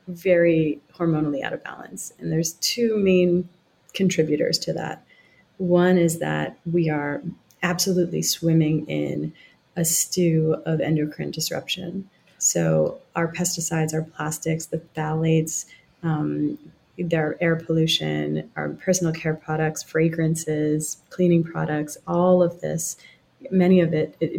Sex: female